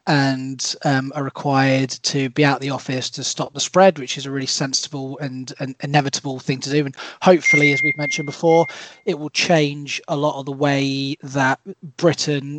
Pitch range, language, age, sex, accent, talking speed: 140-165 Hz, English, 20-39, male, British, 195 wpm